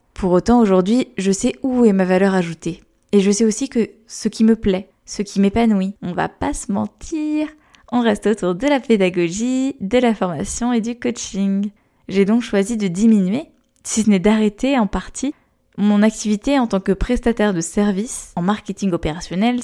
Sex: female